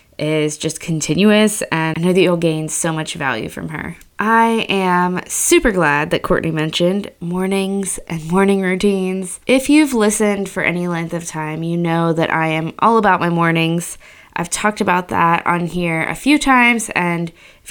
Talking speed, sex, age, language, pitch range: 180 wpm, female, 20-39, English, 165-195 Hz